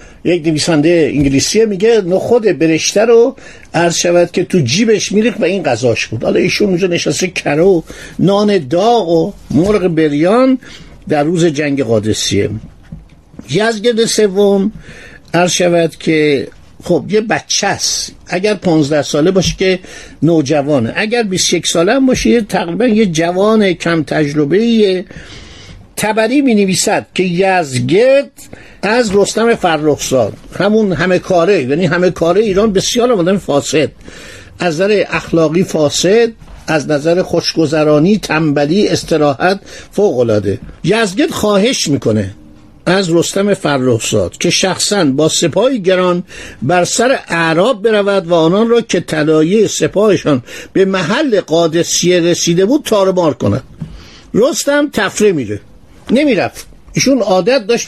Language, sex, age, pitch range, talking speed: Persian, male, 60-79, 160-215 Hz, 125 wpm